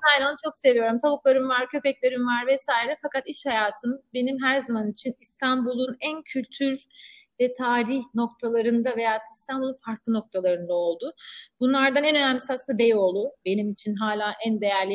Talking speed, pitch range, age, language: 150 wpm, 225-275 Hz, 30-49, Turkish